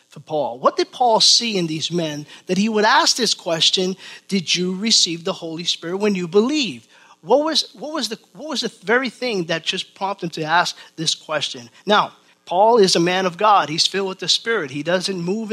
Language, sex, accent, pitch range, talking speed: English, male, American, 175-225 Hz, 220 wpm